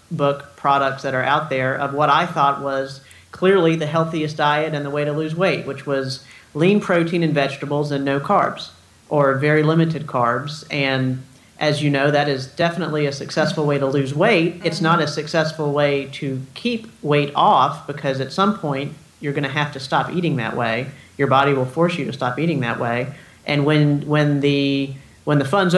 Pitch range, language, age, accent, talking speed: 135-155 Hz, English, 40-59, American, 200 wpm